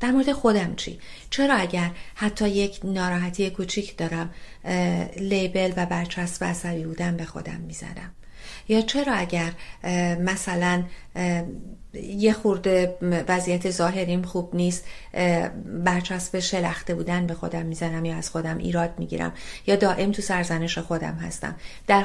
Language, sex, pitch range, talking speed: Persian, female, 170-220 Hz, 135 wpm